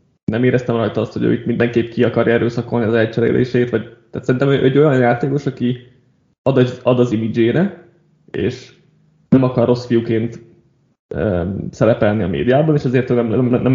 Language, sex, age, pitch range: Hungarian, male, 20-39, 115-140 Hz